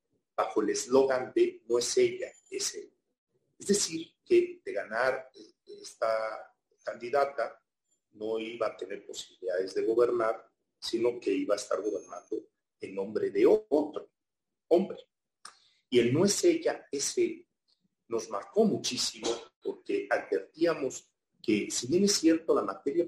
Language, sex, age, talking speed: Spanish, male, 40-59, 135 wpm